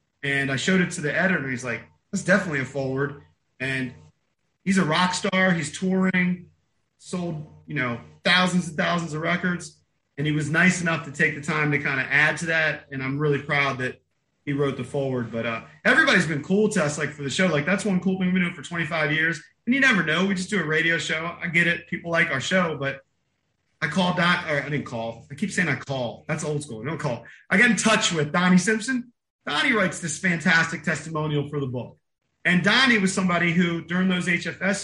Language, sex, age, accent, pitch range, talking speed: English, male, 30-49, American, 145-185 Hz, 230 wpm